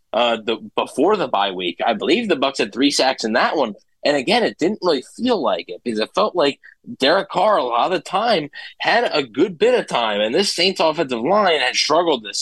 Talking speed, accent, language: 235 wpm, American, English